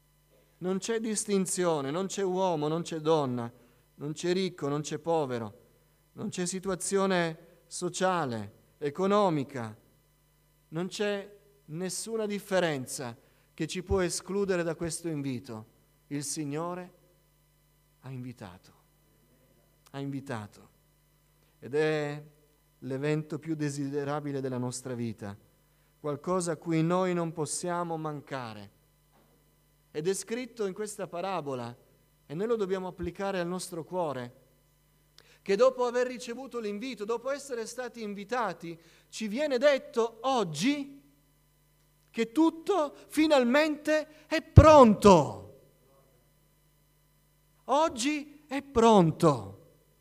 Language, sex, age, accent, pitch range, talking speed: Italian, male, 40-59, native, 145-210 Hz, 105 wpm